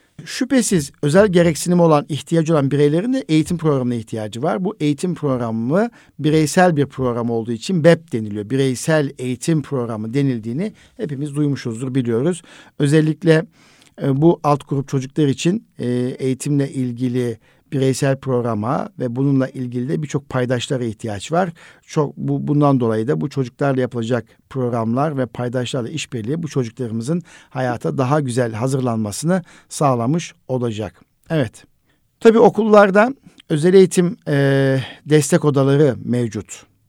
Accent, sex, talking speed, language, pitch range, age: native, male, 125 wpm, Turkish, 125-155 Hz, 60-79